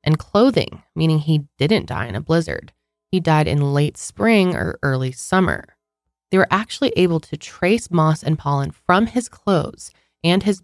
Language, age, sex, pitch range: English, 20-39, female, 140-185 Hz